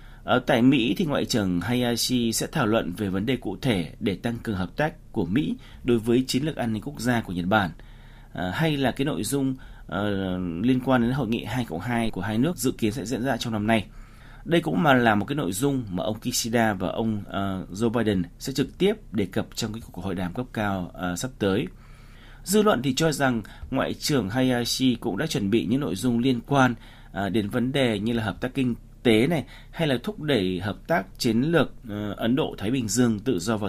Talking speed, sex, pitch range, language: 235 wpm, male, 105-130 Hz, Vietnamese